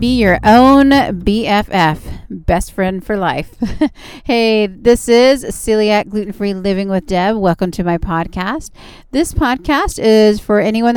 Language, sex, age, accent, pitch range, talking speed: English, female, 30-49, American, 175-220 Hz, 135 wpm